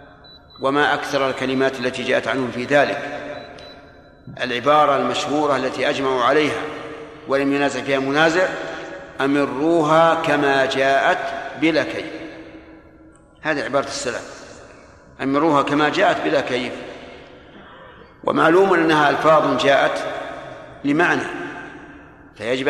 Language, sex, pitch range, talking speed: Arabic, male, 135-155 Hz, 95 wpm